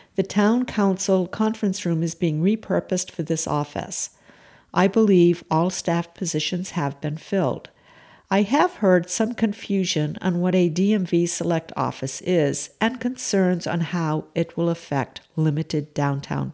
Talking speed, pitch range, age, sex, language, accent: 145 wpm, 165-200 Hz, 50-69, female, English, American